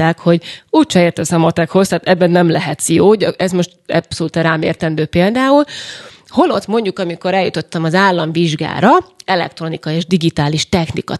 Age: 30-49